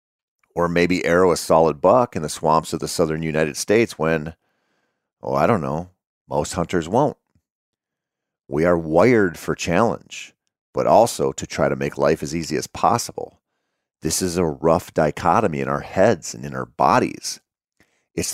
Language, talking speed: English, 165 wpm